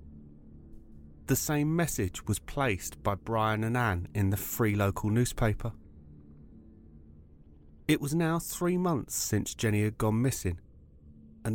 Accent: British